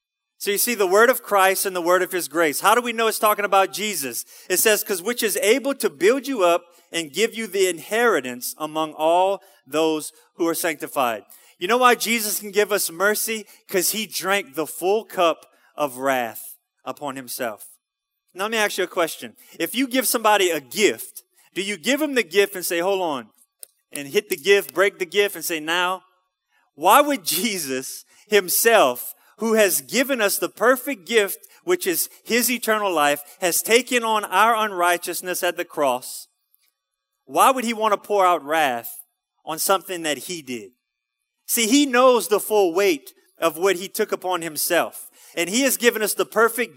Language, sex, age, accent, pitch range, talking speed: English, male, 30-49, American, 165-225 Hz, 190 wpm